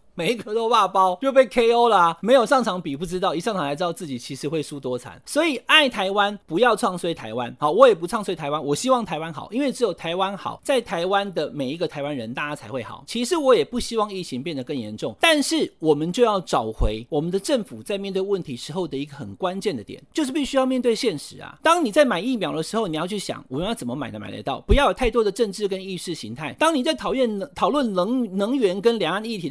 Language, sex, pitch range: Chinese, male, 155-250 Hz